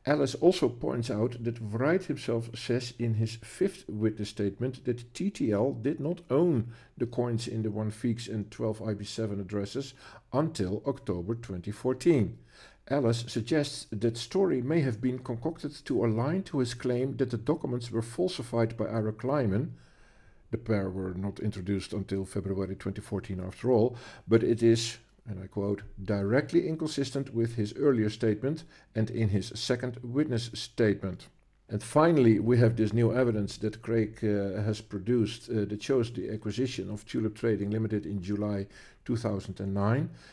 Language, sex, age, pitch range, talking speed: English, male, 50-69, 105-125 Hz, 150 wpm